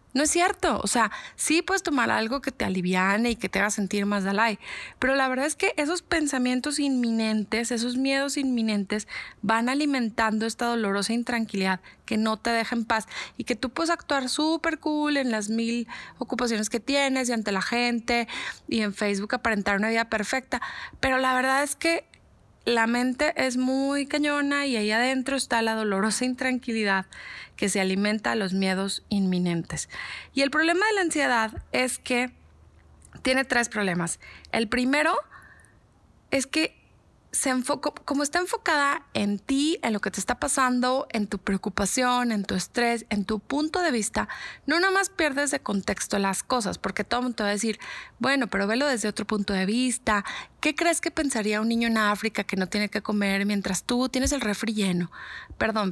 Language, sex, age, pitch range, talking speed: Spanish, female, 20-39, 210-275 Hz, 185 wpm